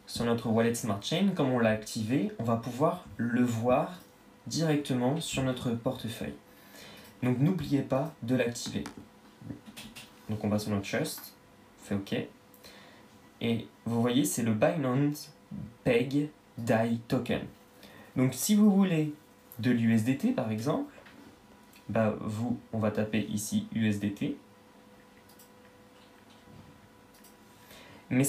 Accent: French